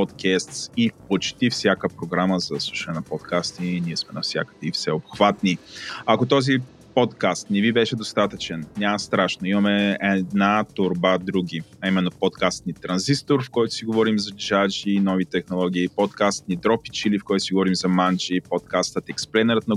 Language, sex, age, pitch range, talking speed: Bulgarian, male, 30-49, 95-115 Hz, 165 wpm